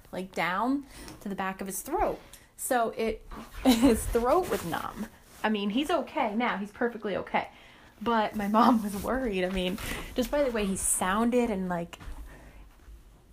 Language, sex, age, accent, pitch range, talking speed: English, female, 20-39, American, 190-230 Hz, 165 wpm